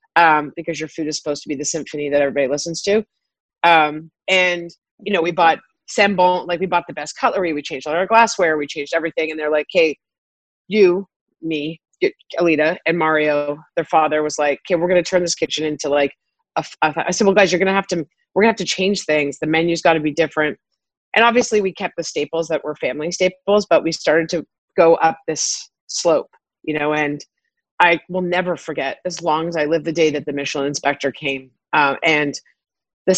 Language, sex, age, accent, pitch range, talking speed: English, female, 30-49, American, 150-175 Hz, 215 wpm